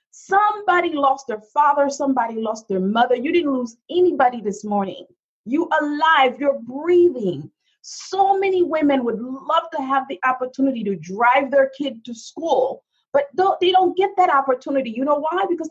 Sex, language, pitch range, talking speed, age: female, English, 245-325 Hz, 165 wpm, 40-59